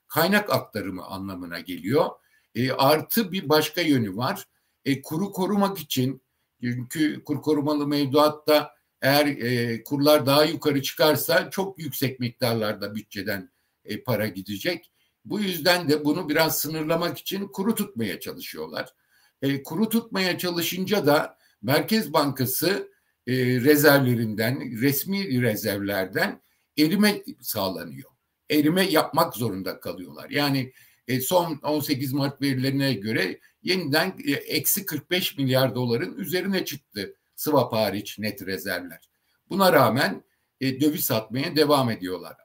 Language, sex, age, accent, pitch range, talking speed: Turkish, male, 60-79, native, 120-160 Hz, 115 wpm